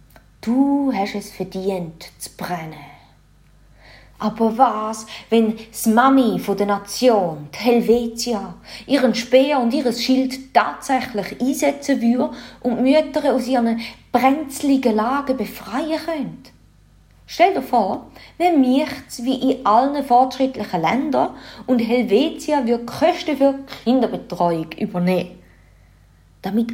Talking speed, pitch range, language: 110 wpm, 200-270 Hz, English